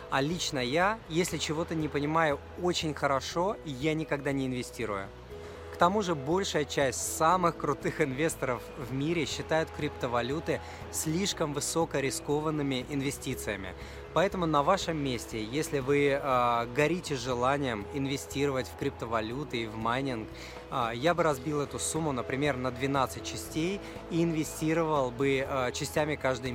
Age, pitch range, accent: 20-39, 130-165 Hz, native